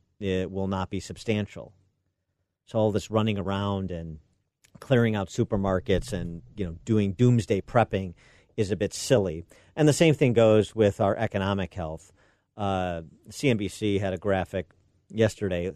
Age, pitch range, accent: 50-69, 95-105 Hz, American